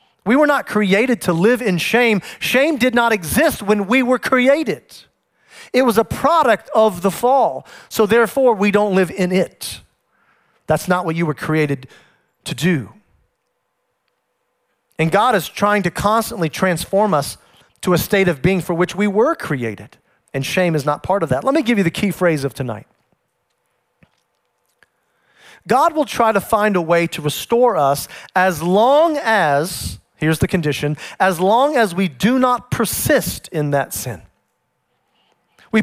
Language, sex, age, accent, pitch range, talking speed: English, male, 40-59, American, 165-220 Hz, 165 wpm